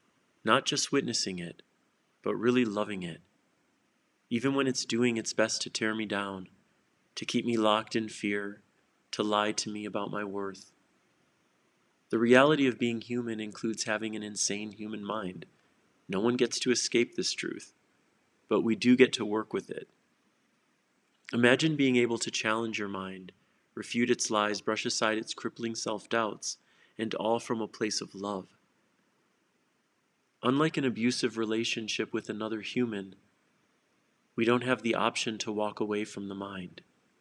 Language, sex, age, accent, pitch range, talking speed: English, male, 30-49, American, 105-120 Hz, 155 wpm